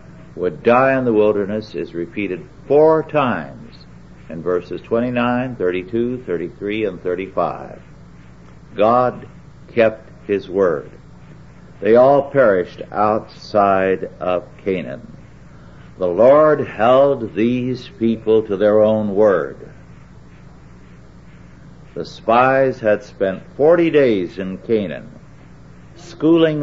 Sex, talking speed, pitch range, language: male, 100 wpm, 100-135 Hz, English